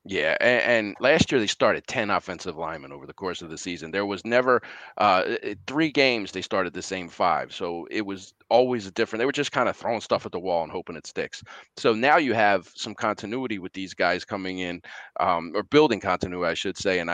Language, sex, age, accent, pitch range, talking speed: English, male, 30-49, American, 85-105 Hz, 225 wpm